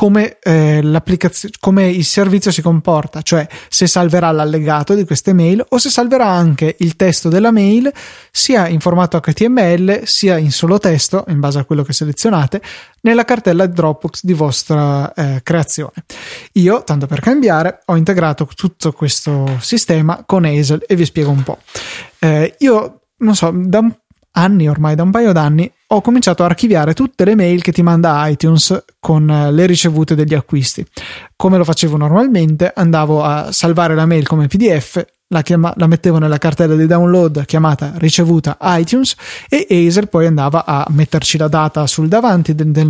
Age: 20-39